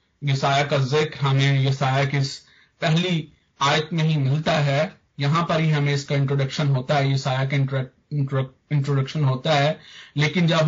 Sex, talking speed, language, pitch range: male, 150 wpm, Hindi, 140-170 Hz